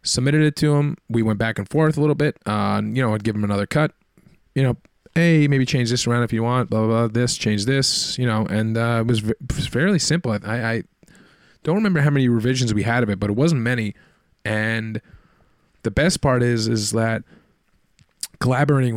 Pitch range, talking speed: 105-130 Hz, 220 wpm